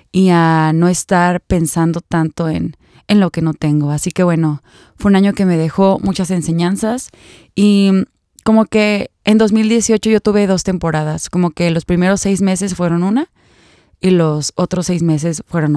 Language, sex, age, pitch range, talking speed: Spanish, female, 20-39, 170-200 Hz, 175 wpm